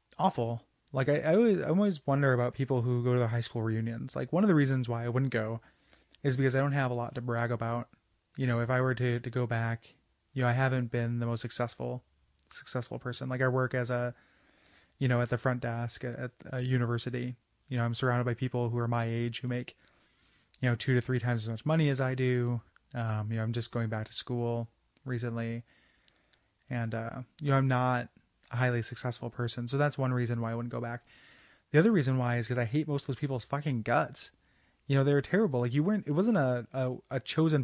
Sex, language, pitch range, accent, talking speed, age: male, English, 115-130 Hz, American, 240 wpm, 20-39